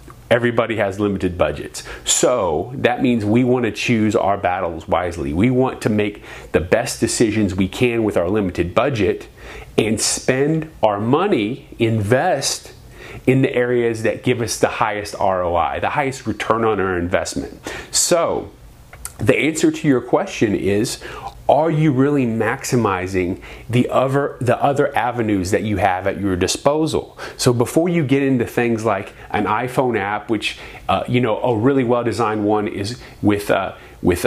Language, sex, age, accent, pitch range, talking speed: English, male, 30-49, American, 100-125 Hz, 160 wpm